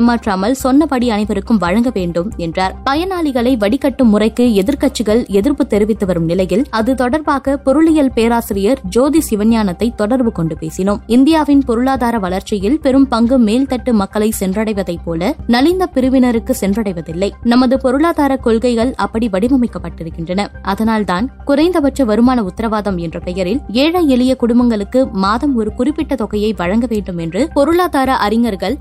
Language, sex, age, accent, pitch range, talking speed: Tamil, female, 20-39, native, 205-270 Hz, 120 wpm